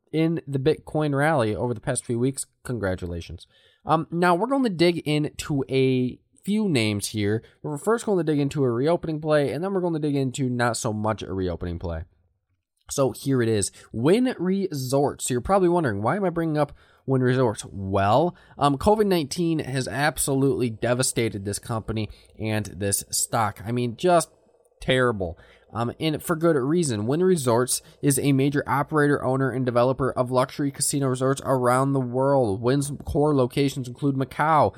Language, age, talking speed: English, 20-39, 175 wpm